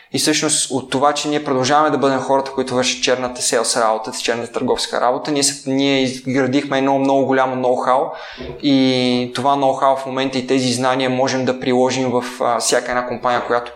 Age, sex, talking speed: 20-39, male, 190 wpm